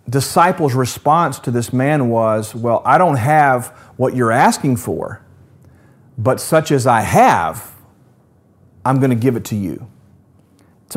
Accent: American